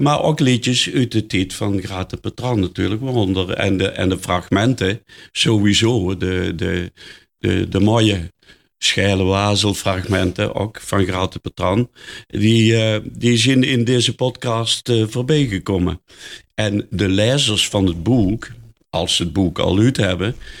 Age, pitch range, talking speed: 50-69, 95-120 Hz, 125 wpm